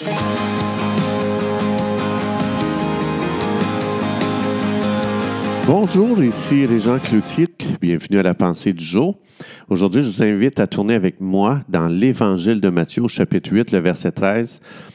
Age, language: 50-69, French